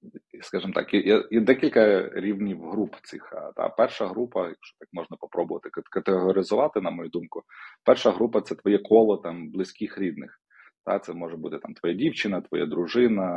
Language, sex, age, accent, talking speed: Ukrainian, male, 30-49, native, 155 wpm